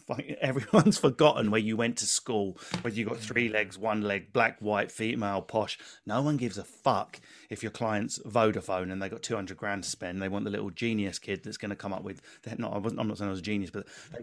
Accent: British